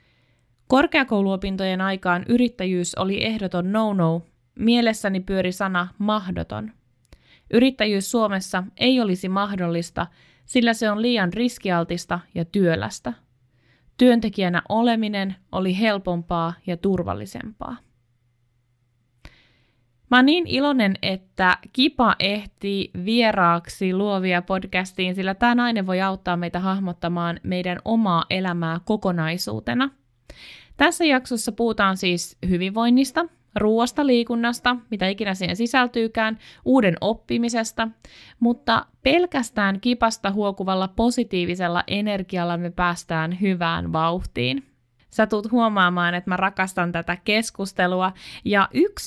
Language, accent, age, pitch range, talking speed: Finnish, native, 20-39, 175-225 Hz, 100 wpm